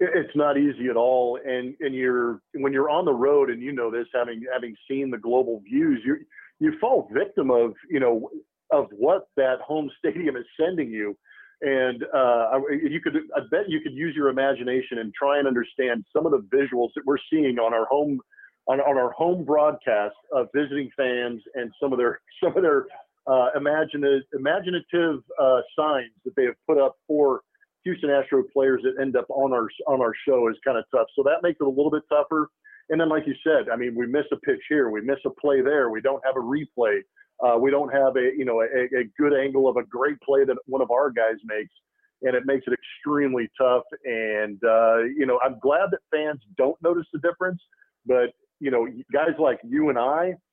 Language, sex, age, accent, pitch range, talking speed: English, male, 50-69, American, 125-170 Hz, 215 wpm